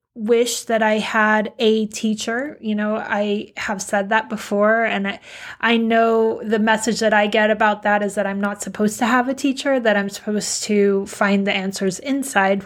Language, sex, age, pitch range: English, female, 20-39, 210-240 Hz